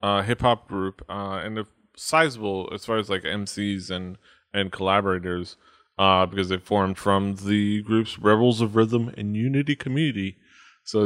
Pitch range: 95-110 Hz